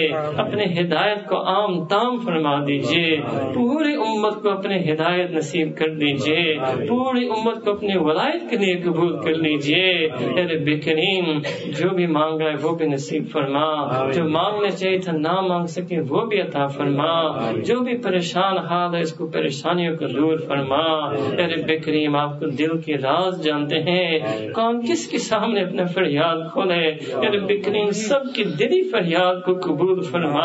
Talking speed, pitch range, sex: 110 wpm, 160-210 Hz, male